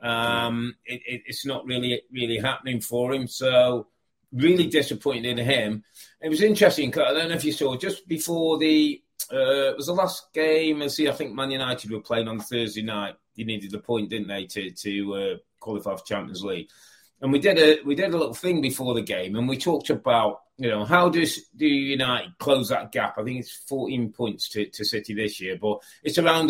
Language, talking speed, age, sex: English, 215 wpm, 30-49, male